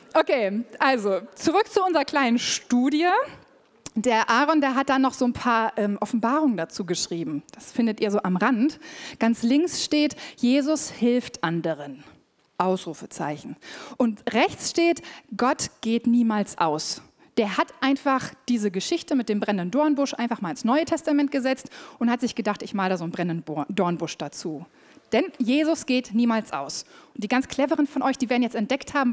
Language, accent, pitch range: German, German, 210-295 Hz